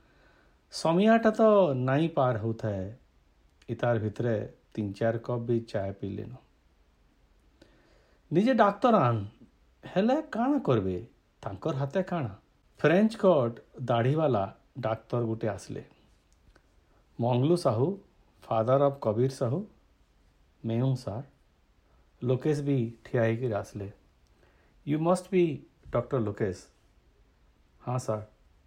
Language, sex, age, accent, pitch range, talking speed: Hindi, male, 50-69, native, 95-155 Hz, 90 wpm